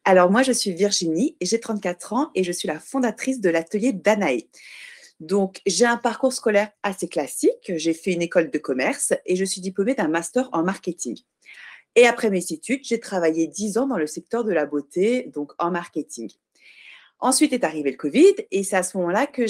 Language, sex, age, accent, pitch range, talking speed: French, female, 30-49, French, 170-250 Hz, 200 wpm